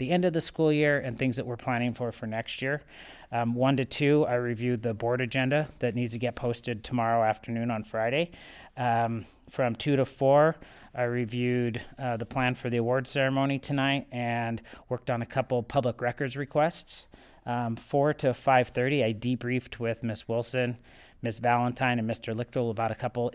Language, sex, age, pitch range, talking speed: English, male, 30-49, 120-140 Hz, 190 wpm